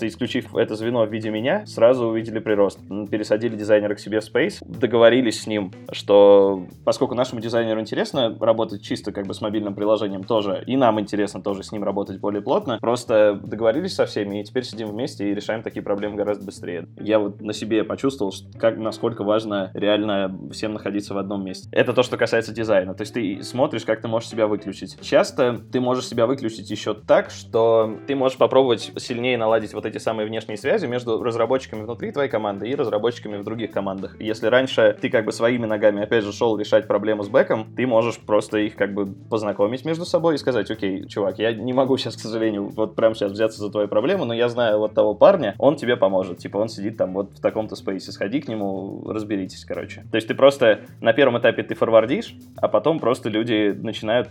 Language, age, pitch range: Russian, 20-39, 100-115 Hz